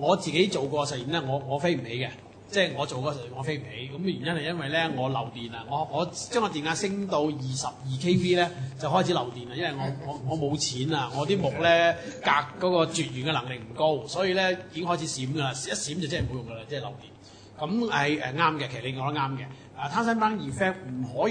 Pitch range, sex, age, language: 130-175 Hz, male, 30-49, English